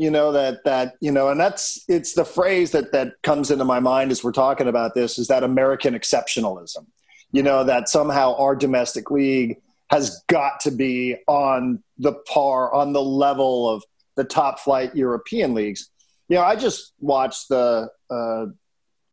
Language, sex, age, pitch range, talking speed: English, male, 40-59, 125-155 Hz, 175 wpm